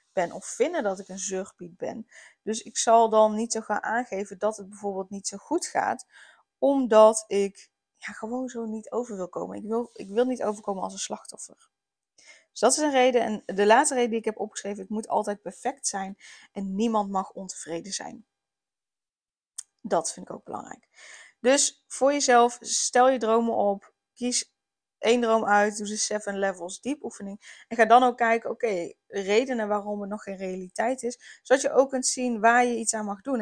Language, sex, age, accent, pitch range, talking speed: Dutch, female, 20-39, Dutch, 200-240 Hz, 195 wpm